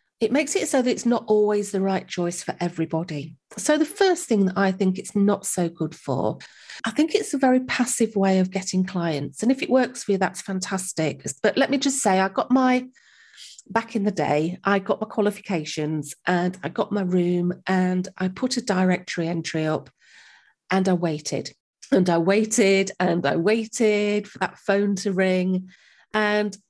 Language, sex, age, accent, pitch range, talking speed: English, female, 40-59, British, 175-220 Hz, 195 wpm